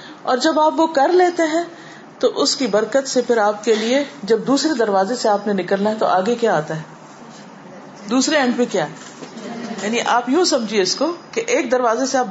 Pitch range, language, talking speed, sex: 205-275 Hz, Urdu, 215 wpm, female